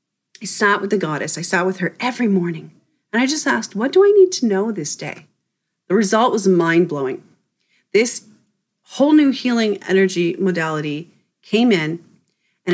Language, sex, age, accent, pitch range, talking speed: English, female, 40-59, American, 165-210 Hz, 170 wpm